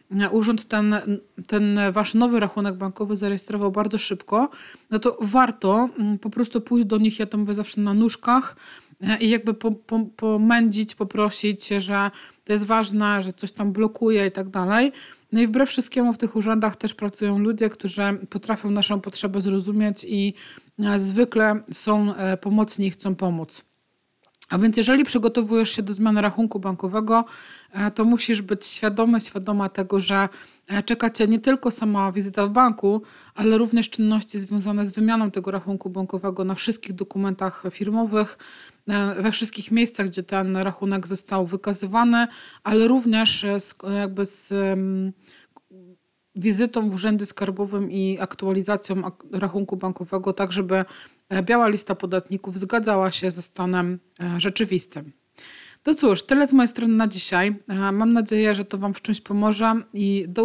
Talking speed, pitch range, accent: 145 wpm, 195-225 Hz, native